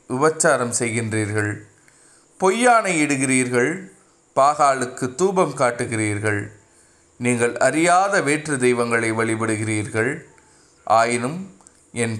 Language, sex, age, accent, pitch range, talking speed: Tamil, male, 30-49, native, 110-135 Hz, 70 wpm